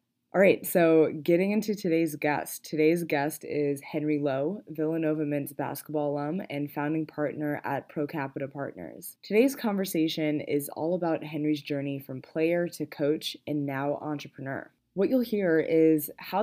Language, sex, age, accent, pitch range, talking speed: English, female, 20-39, American, 145-165 Hz, 155 wpm